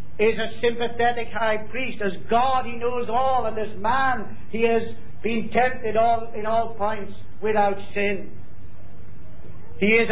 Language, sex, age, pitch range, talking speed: English, male, 50-69, 180-230 Hz, 140 wpm